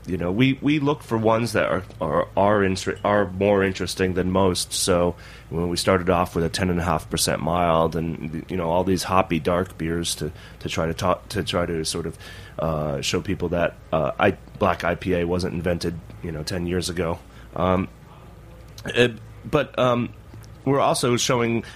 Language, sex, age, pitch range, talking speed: English, male, 30-49, 90-115 Hz, 200 wpm